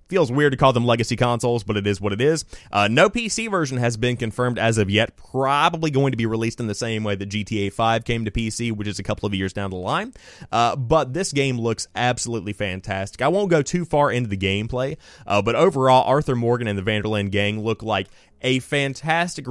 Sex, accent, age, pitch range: male, American, 30-49, 105-140 Hz